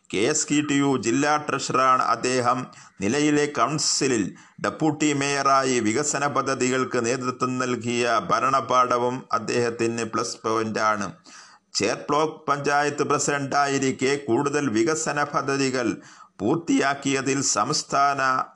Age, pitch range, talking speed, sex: 50-69, 125-145 Hz, 95 wpm, male